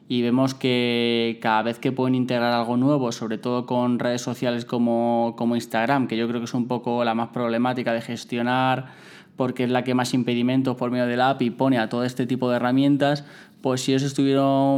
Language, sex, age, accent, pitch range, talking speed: Spanish, male, 20-39, Spanish, 115-130 Hz, 205 wpm